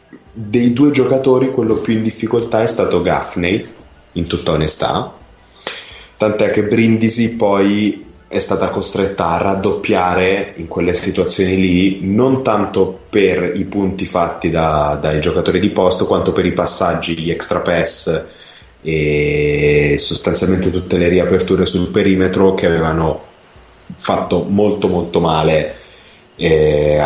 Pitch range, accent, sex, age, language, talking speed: 80-105 Hz, native, male, 20-39, Italian, 130 wpm